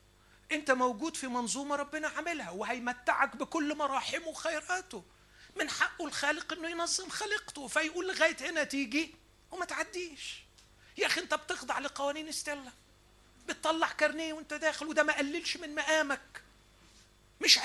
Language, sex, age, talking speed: Arabic, male, 40-59, 125 wpm